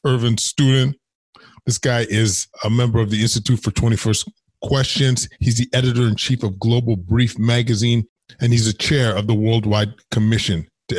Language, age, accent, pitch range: English, 20-39, American, 105-130 Hz